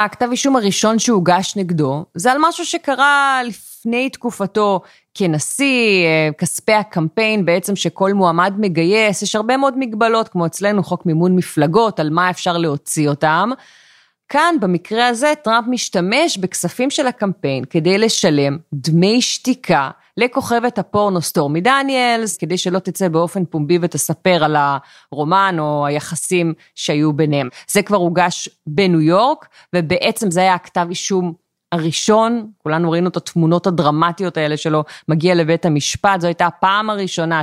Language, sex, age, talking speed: Hebrew, female, 30-49, 135 wpm